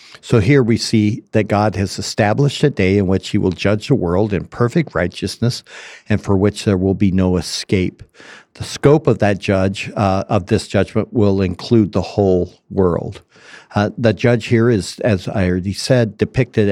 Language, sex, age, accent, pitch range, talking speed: English, male, 60-79, American, 95-120 Hz, 185 wpm